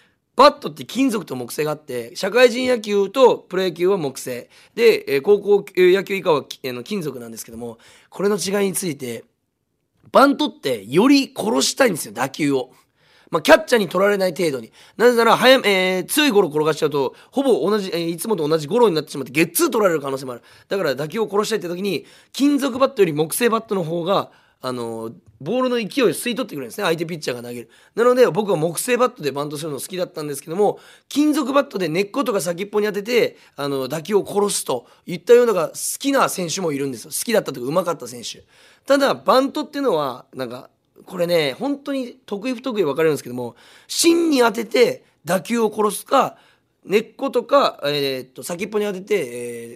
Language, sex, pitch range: Japanese, male, 155-260 Hz